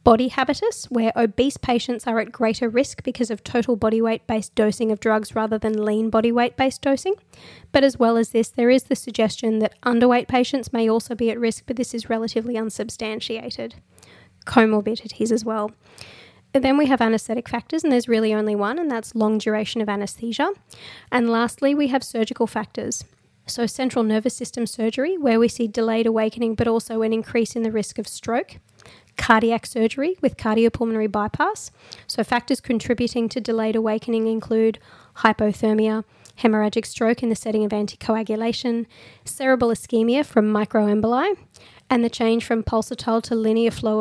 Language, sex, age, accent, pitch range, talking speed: English, female, 20-39, Australian, 220-245 Hz, 165 wpm